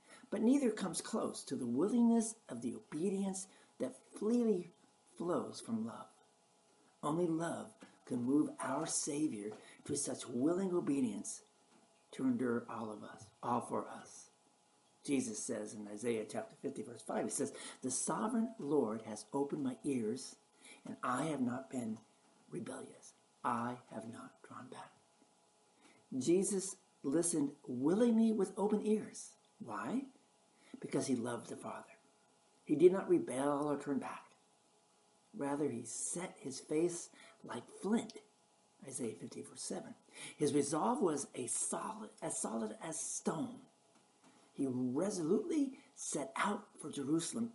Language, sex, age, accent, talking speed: English, male, 60-79, American, 130 wpm